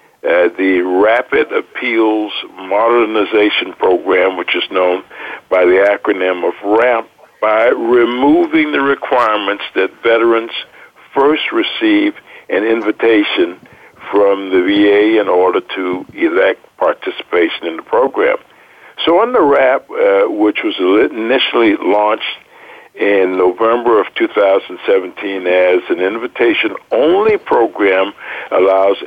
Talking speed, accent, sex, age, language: 110 wpm, American, male, 60-79, English